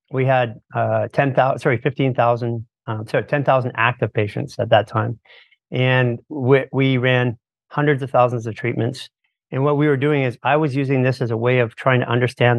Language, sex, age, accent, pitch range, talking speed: English, male, 50-69, American, 120-140 Hz, 185 wpm